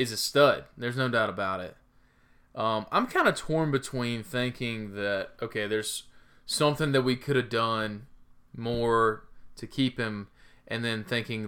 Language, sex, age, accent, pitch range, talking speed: English, male, 20-39, American, 105-135 Hz, 155 wpm